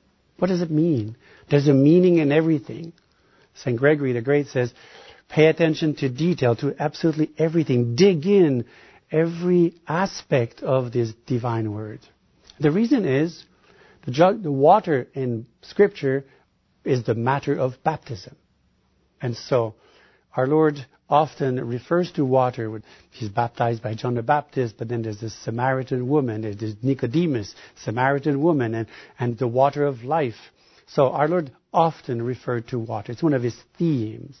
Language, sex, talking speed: English, male, 145 wpm